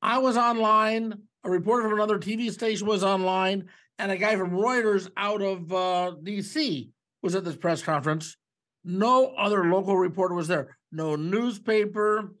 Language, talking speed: English, 160 wpm